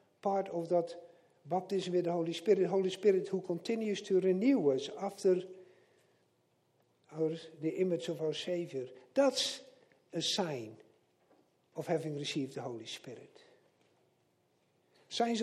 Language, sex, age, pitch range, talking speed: English, male, 60-79, 135-200 Hz, 130 wpm